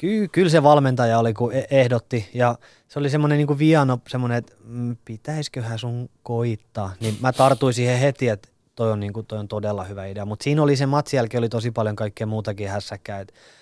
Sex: male